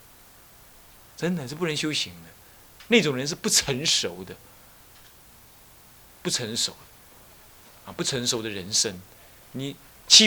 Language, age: Chinese, 30-49